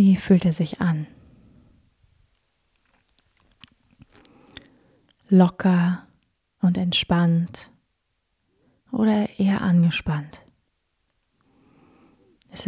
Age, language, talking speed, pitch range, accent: 30-49, German, 55 wpm, 160-190 Hz, German